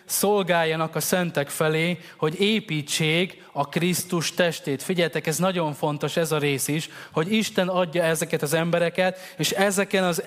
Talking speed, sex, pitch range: 150 wpm, male, 165-190 Hz